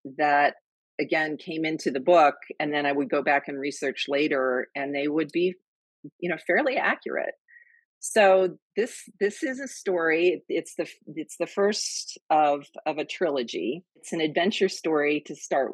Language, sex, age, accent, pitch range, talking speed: English, female, 40-59, American, 140-175 Hz, 170 wpm